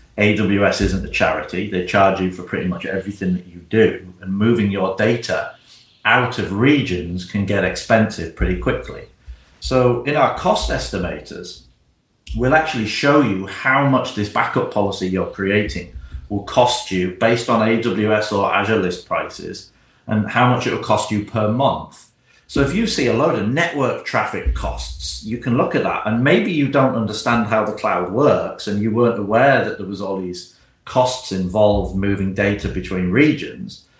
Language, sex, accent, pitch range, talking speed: English, male, British, 95-120 Hz, 175 wpm